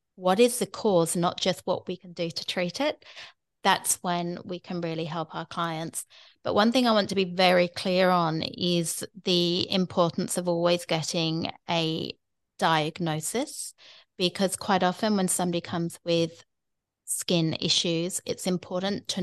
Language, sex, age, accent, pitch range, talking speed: English, female, 30-49, British, 165-185 Hz, 160 wpm